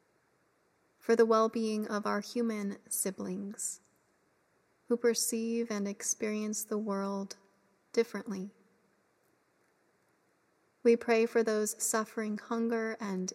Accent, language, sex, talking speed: American, English, female, 95 wpm